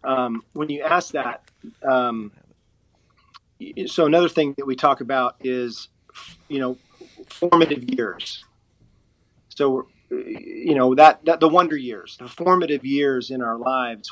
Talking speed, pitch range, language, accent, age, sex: 135 wpm, 125-150 Hz, English, American, 40-59, male